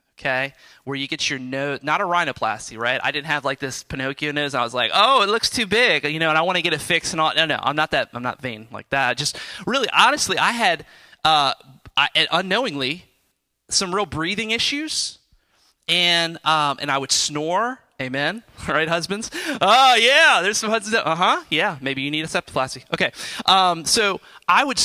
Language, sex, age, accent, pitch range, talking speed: English, male, 30-49, American, 135-165 Hz, 210 wpm